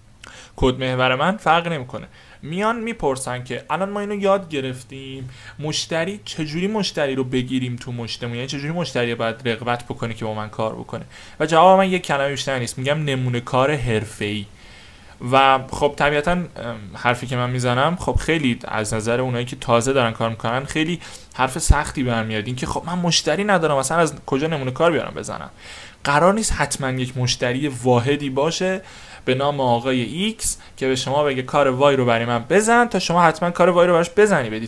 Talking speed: 185 wpm